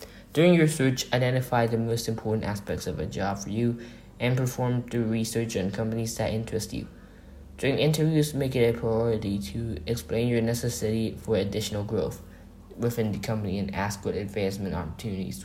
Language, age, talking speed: English, 10-29, 165 wpm